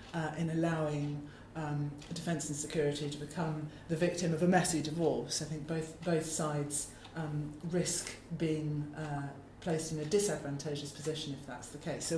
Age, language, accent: 40-59, English, British